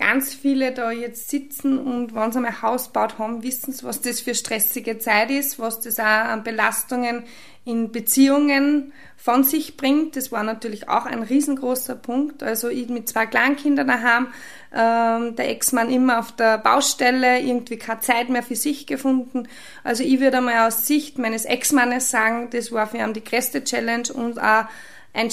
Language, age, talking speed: German, 20-39, 180 wpm